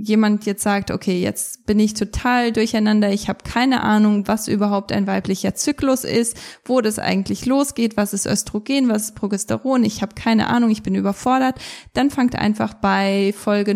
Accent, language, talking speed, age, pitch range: German, German, 180 wpm, 10-29, 200-230 Hz